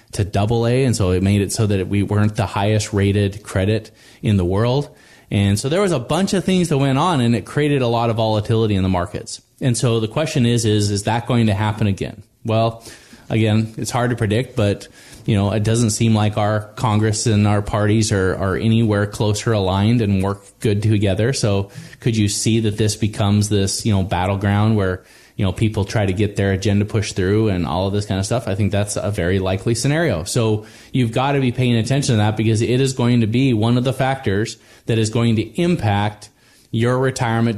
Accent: American